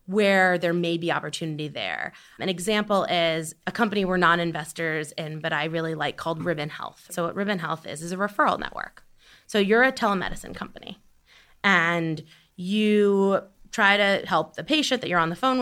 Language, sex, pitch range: English, female, 170-215 Hz